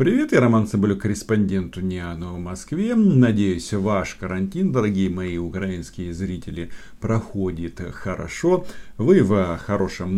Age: 40-59